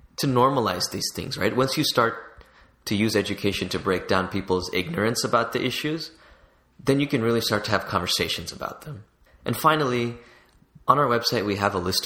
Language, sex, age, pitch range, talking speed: English, male, 20-39, 95-115 Hz, 190 wpm